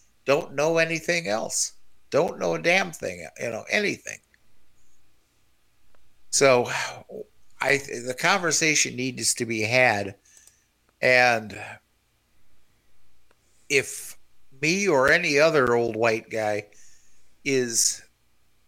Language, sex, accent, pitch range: English, male, American, 110-135 Hz